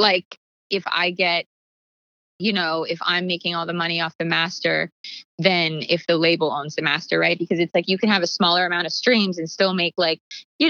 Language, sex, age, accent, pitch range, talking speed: English, female, 20-39, American, 165-190 Hz, 220 wpm